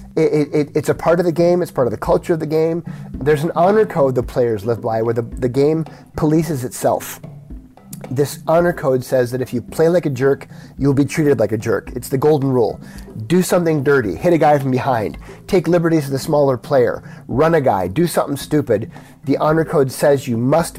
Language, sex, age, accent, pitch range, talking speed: English, male, 30-49, American, 130-160 Hz, 215 wpm